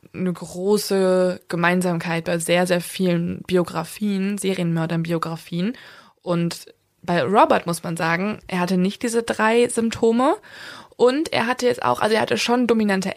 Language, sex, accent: German, female, German